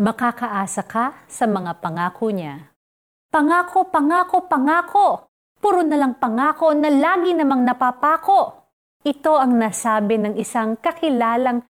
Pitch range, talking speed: 200-265 Hz, 120 wpm